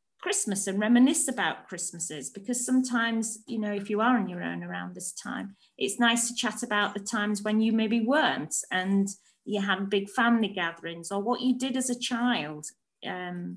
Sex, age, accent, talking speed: female, 30-49, British, 190 wpm